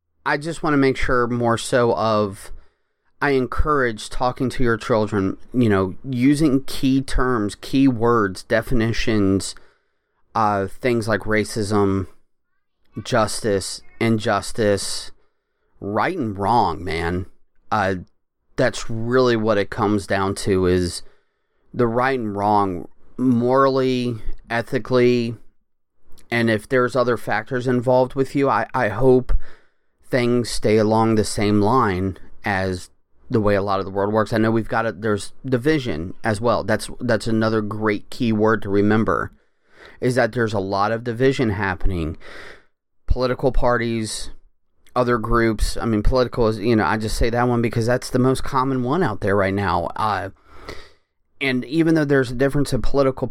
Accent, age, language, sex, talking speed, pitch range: American, 30-49, English, male, 150 wpm, 100-125 Hz